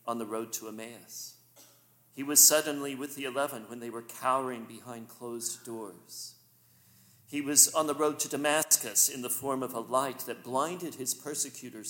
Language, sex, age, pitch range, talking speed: English, male, 50-69, 110-160 Hz, 175 wpm